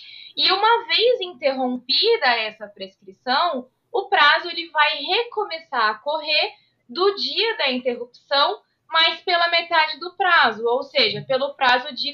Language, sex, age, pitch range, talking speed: Portuguese, female, 20-39, 250-365 Hz, 130 wpm